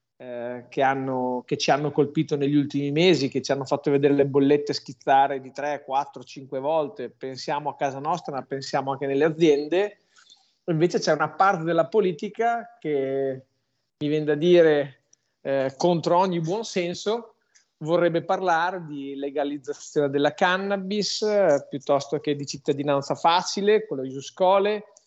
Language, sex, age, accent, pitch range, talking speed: Italian, male, 40-59, native, 140-170 Hz, 150 wpm